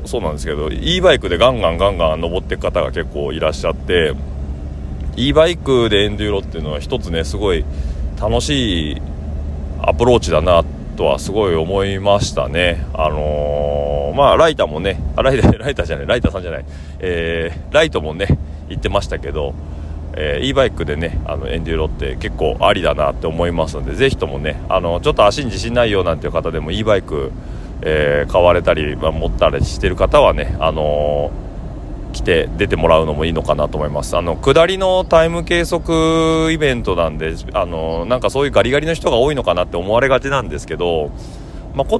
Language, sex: Japanese, male